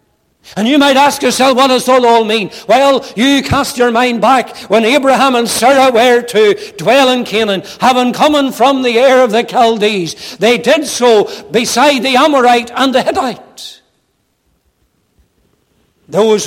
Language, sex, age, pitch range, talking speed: English, male, 60-79, 205-245 Hz, 160 wpm